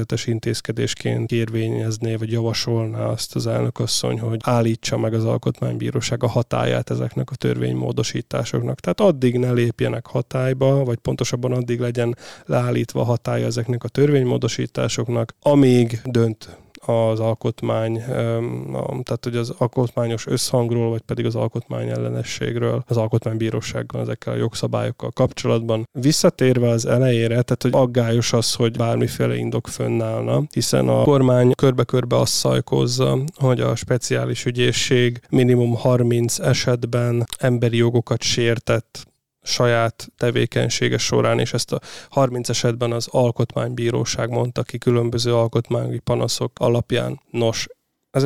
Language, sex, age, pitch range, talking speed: Hungarian, male, 20-39, 110-125 Hz, 120 wpm